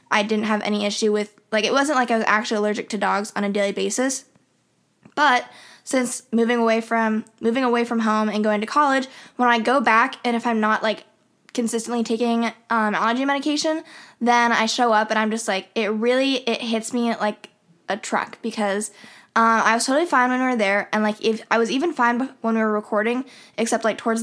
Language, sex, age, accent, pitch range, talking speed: English, female, 10-29, American, 210-245 Hz, 215 wpm